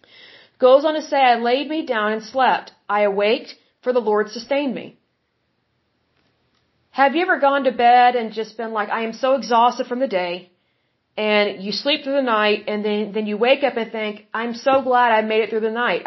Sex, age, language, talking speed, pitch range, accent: female, 40-59, English, 215 wpm, 215-265 Hz, American